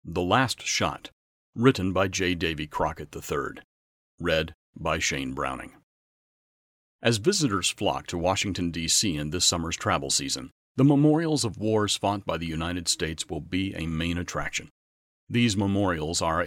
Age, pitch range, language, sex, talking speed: 40-59, 85-110 Hz, English, male, 150 wpm